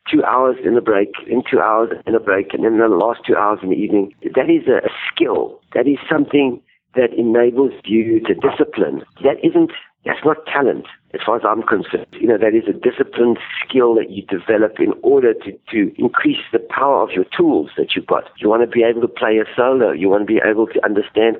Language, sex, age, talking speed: English, male, 60-79, 235 wpm